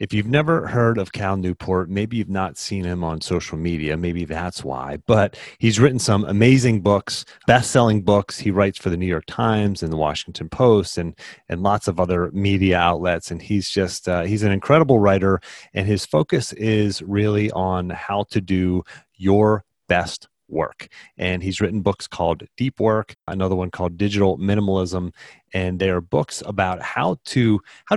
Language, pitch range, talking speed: English, 90-110 Hz, 180 wpm